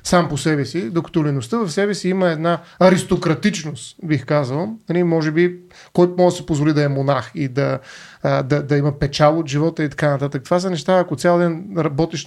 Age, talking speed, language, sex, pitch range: 30-49, 205 wpm, Bulgarian, male, 145-185 Hz